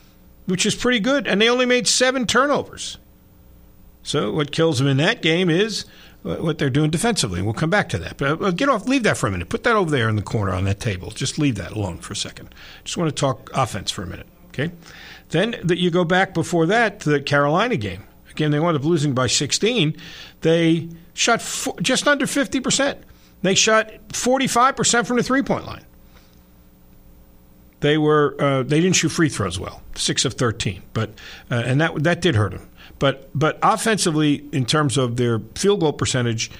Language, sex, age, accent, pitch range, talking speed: English, male, 50-69, American, 110-185 Hz, 205 wpm